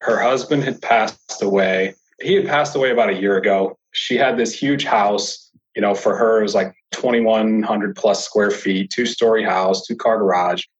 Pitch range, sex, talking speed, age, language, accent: 100-125 Hz, male, 185 wpm, 30-49, English, American